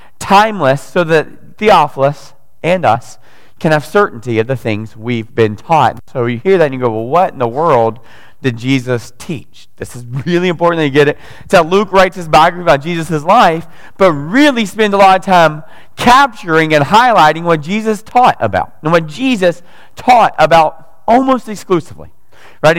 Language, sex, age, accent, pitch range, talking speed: English, male, 30-49, American, 140-195 Hz, 180 wpm